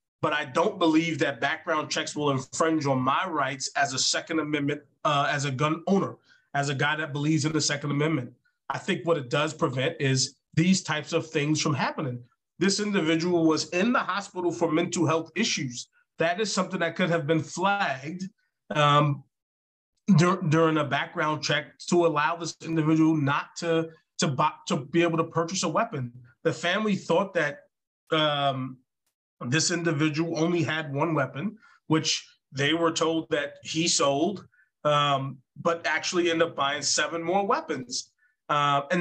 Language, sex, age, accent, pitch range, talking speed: English, male, 30-49, American, 145-175 Hz, 170 wpm